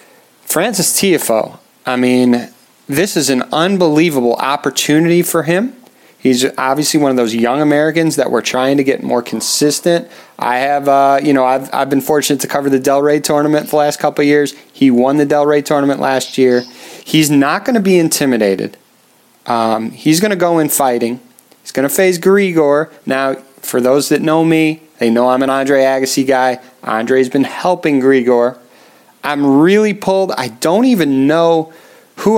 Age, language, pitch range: 30-49, English, 130-170 Hz